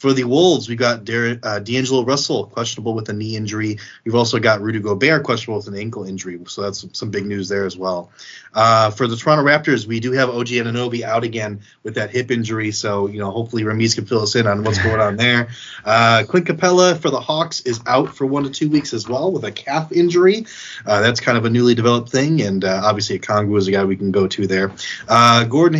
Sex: male